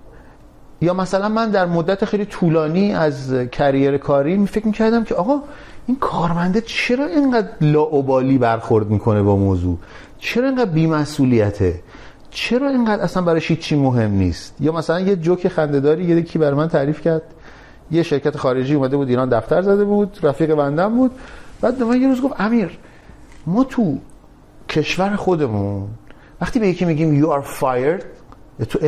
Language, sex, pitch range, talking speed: Persian, male, 145-230 Hz, 150 wpm